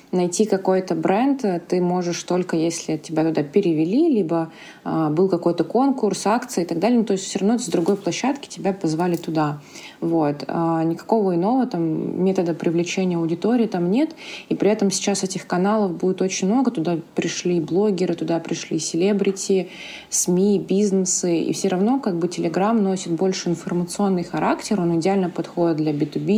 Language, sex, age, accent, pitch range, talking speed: Russian, female, 20-39, native, 170-195 Hz, 160 wpm